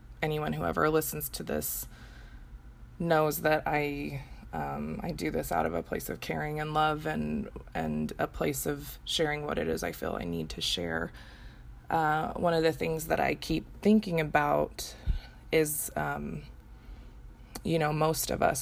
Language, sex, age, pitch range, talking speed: English, female, 20-39, 135-160 Hz, 170 wpm